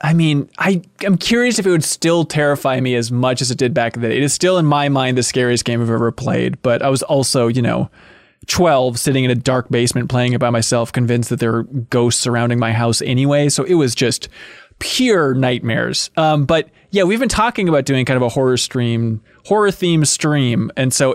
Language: English